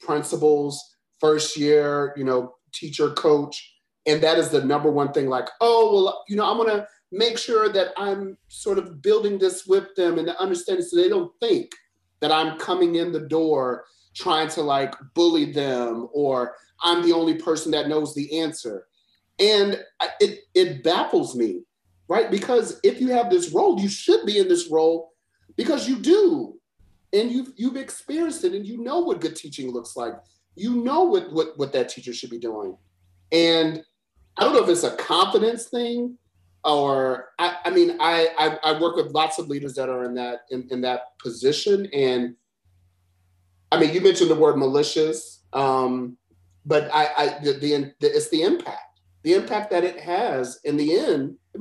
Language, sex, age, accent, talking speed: English, male, 40-59, American, 185 wpm